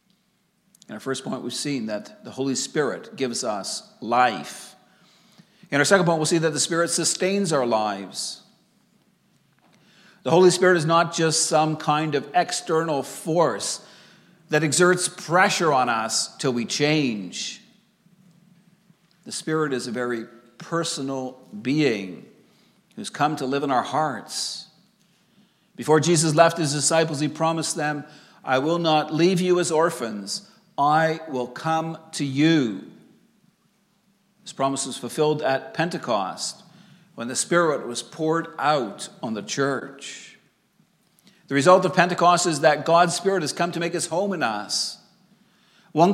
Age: 50-69